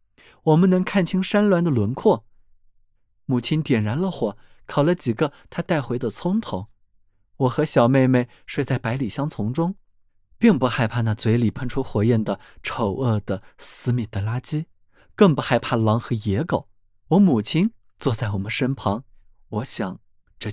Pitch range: 105-155 Hz